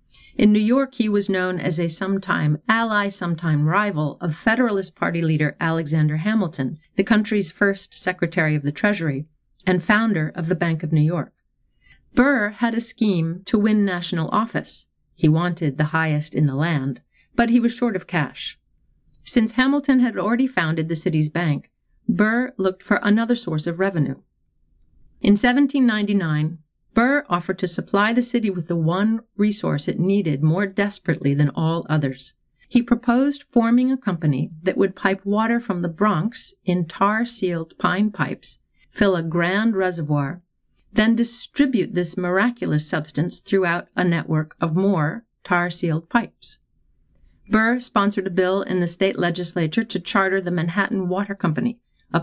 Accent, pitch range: American, 165-215 Hz